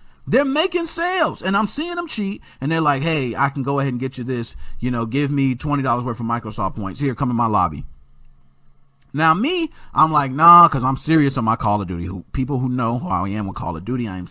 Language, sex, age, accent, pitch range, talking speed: English, male, 30-49, American, 105-170 Hz, 250 wpm